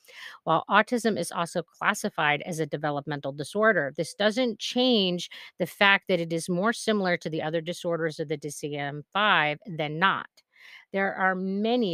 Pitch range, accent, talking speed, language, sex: 160-205 Hz, American, 155 wpm, English, female